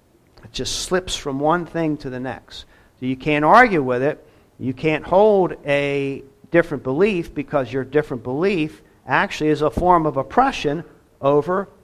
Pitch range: 125-155 Hz